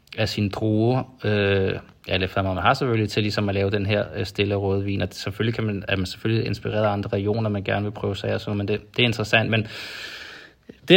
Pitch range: 100-115 Hz